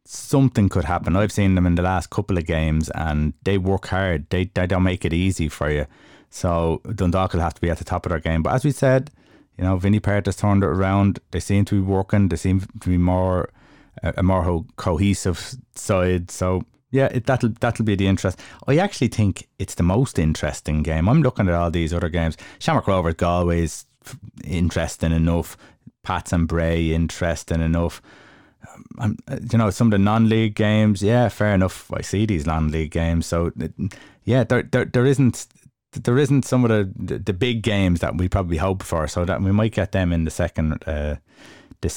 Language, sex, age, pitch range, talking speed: English, male, 20-39, 85-115 Hz, 205 wpm